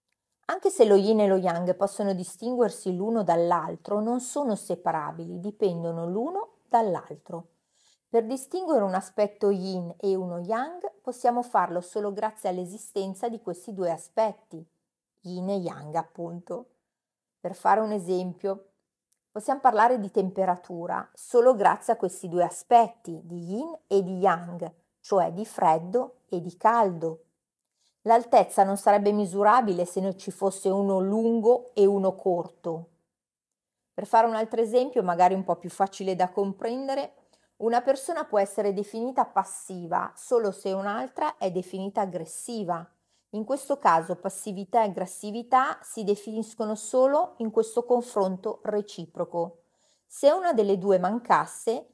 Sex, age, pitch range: female, 40-59, 180-230 Hz